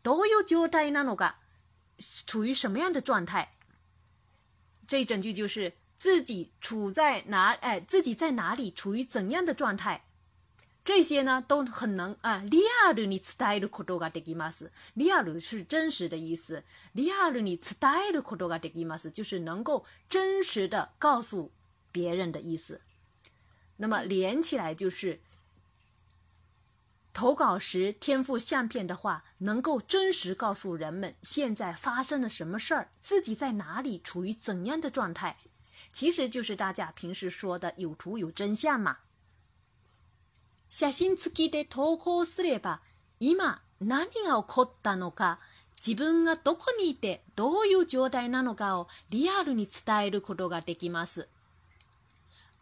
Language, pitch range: Chinese, 165-275 Hz